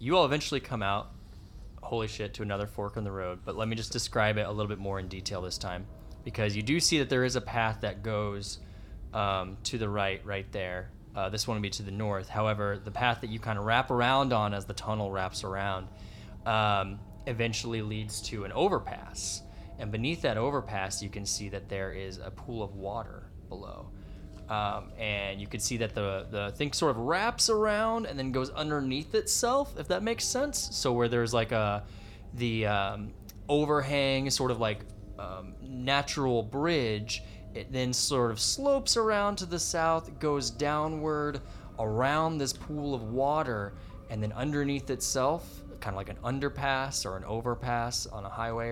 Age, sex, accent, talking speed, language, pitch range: 20-39, male, American, 190 wpm, English, 100-130 Hz